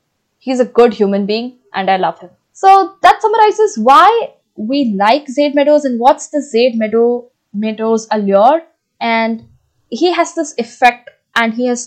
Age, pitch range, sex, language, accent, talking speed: 20-39, 215-270 Hz, female, English, Indian, 155 wpm